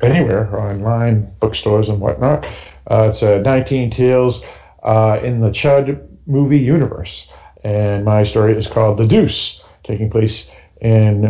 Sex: male